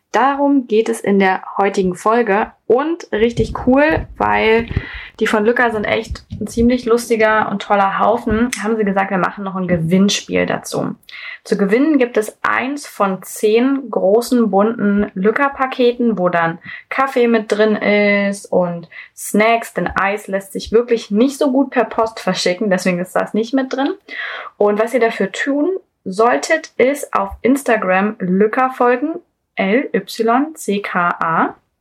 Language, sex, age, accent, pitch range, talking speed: German, female, 20-39, German, 195-245 Hz, 145 wpm